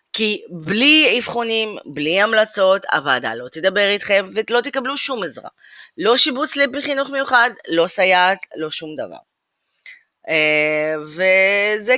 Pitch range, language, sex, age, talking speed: 160-245 Hz, Hebrew, female, 30-49, 120 wpm